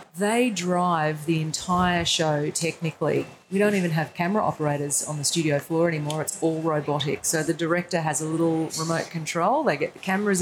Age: 30-49